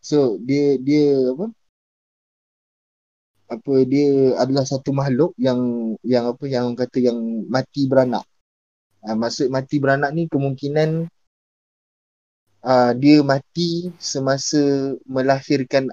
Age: 20-39